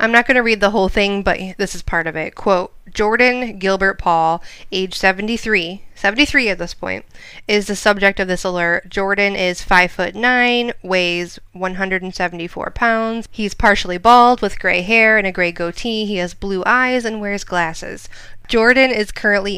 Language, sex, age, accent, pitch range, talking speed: English, female, 20-39, American, 180-225 Hz, 180 wpm